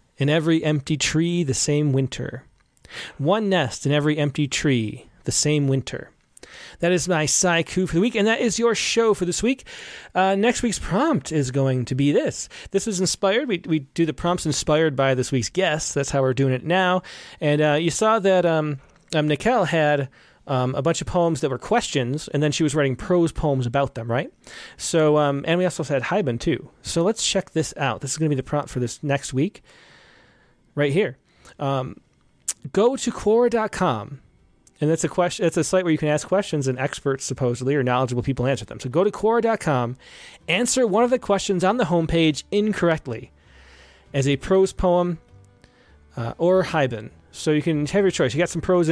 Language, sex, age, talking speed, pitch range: English, male, 30-49, 200 wpm, 135-185 Hz